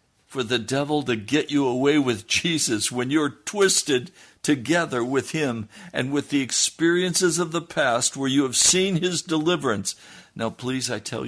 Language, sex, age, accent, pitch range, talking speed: English, male, 60-79, American, 90-125 Hz, 170 wpm